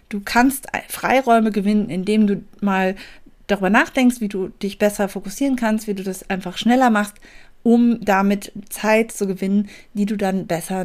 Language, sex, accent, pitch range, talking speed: German, female, German, 195-240 Hz, 165 wpm